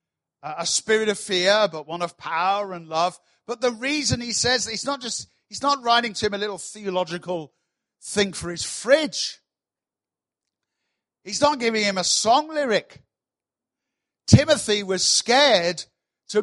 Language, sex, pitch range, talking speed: English, male, 180-235 Hz, 150 wpm